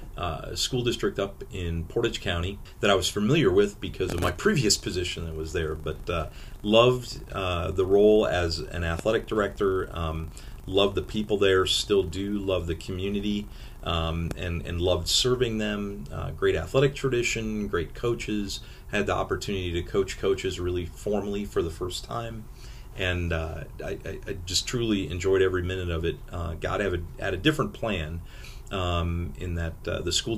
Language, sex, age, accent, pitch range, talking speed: English, male, 40-59, American, 85-105 Hz, 175 wpm